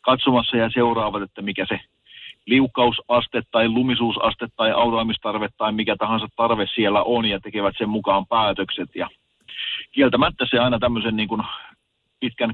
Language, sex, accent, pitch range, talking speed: Finnish, male, native, 100-120 Hz, 145 wpm